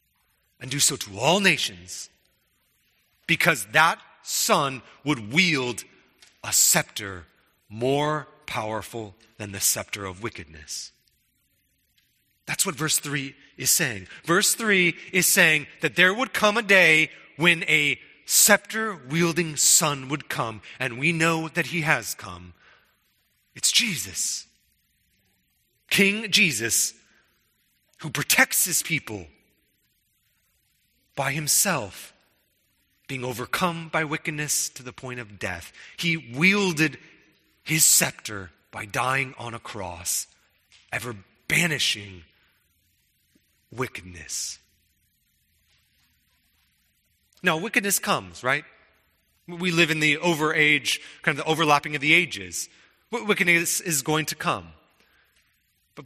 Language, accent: English, American